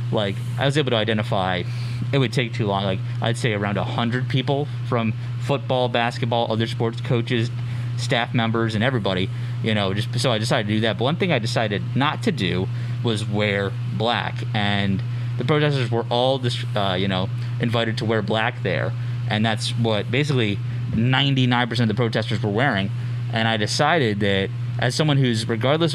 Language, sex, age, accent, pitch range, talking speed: English, male, 20-39, American, 110-125 Hz, 185 wpm